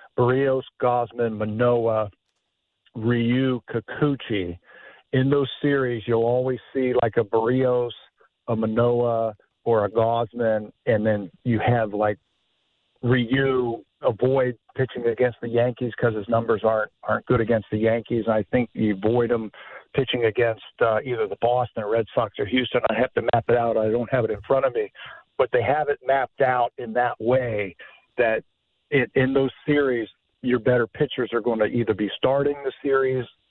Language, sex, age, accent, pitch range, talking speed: English, male, 50-69, American, 115-130 Hz, 165 wpm